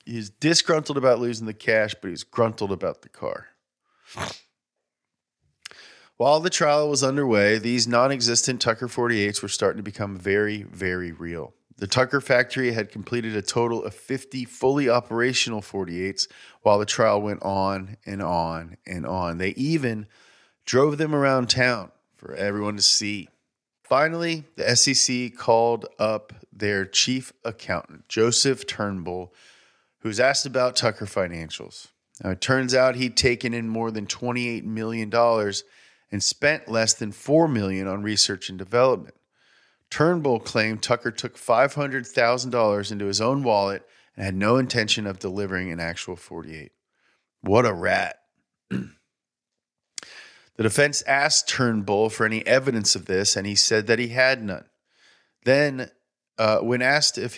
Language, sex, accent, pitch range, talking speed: English, male, American, 100-125 Hz, 145 wpm